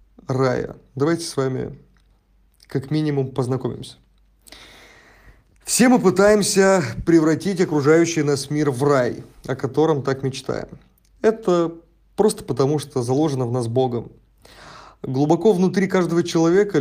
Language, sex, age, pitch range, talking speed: Russian, male, 30-49, 130-170 Hz, 110 wpm